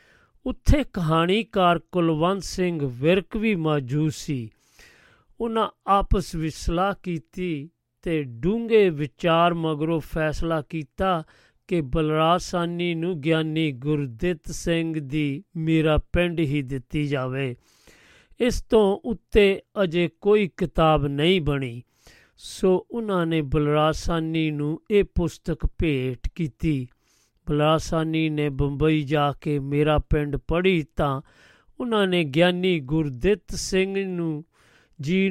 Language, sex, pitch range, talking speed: Punjabi, male, 150-180 Hz, 95 wpm